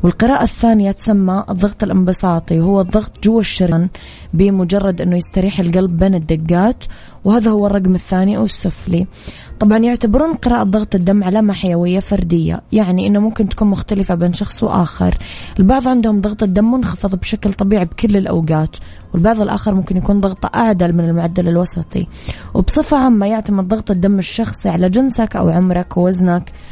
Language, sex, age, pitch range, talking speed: Arabic, female, 20-39, 175-210 Hz, 150 wpm